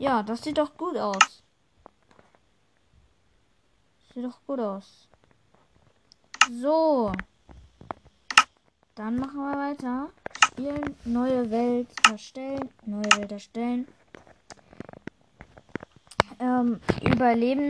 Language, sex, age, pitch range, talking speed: German, female, 20-39, 225-280 Hz, 85 wpm